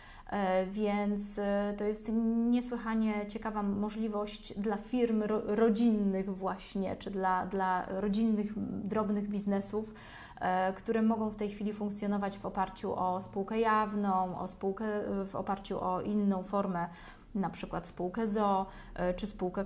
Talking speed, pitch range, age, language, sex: 120 wpm, 190-215 Hz, 30-49, Polish, female